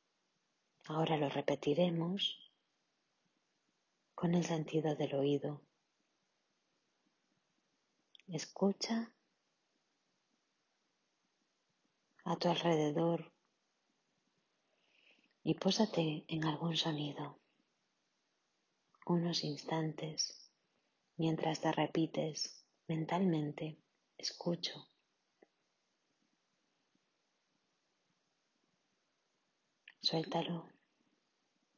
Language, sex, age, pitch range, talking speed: Spanish, female, 30-49, 155-180 Hz, 45 wpm